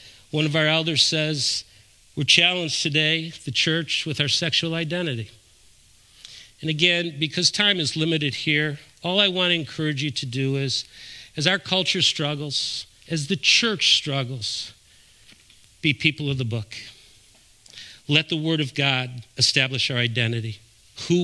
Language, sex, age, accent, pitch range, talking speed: English, male, 50-69, American, 120-170 Hz, 145 wpm